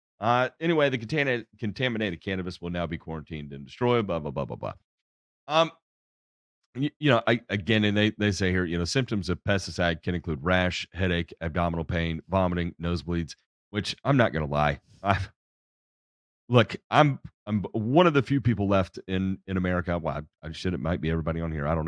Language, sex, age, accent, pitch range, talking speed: English, male, 40-59, American, 80-105 Hz, 195 wpm